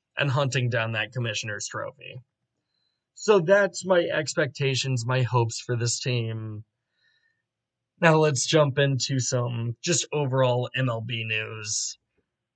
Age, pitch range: 20-39, 120-150 Hz